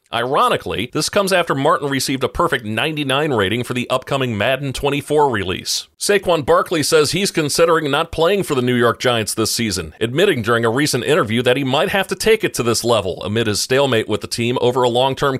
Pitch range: 110-140 Hz